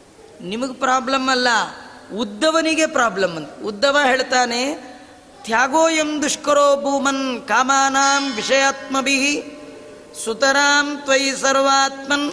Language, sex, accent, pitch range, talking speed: Kannada, female, native, 240-275 Hz, 80 wpm